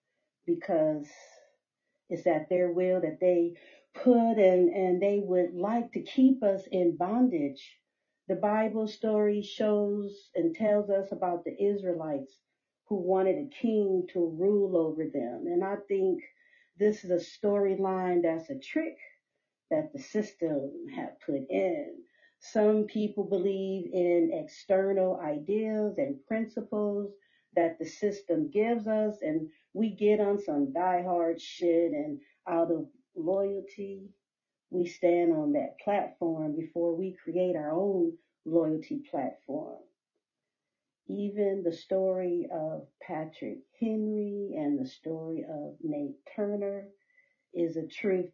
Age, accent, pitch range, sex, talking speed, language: 50-69, American, 175-225 Hz, female, 130 wpm, English